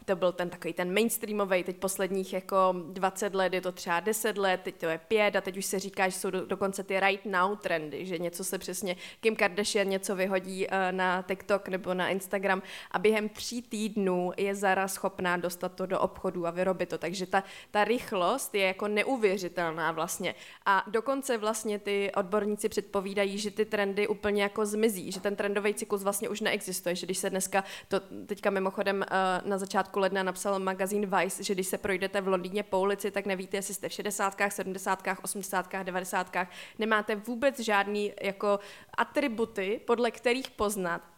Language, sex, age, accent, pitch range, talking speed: Czech, female, 20-39, native, 185-210 Hz, 180 wpm